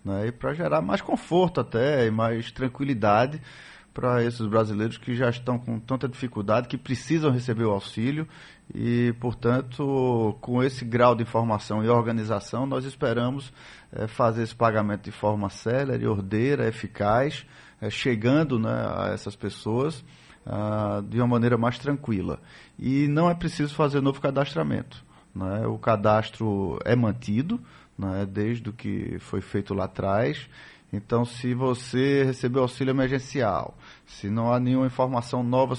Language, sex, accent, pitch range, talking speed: Portuguese, male, Brazilian, 110-130 Hz, 145 wpm